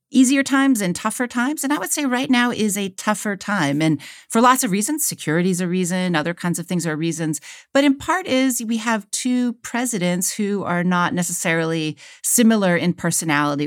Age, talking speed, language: 40-59, 200 wpm, English